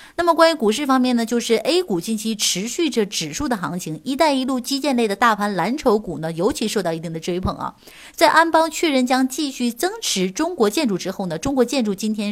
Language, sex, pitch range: Chinese, female, 195-260 Hz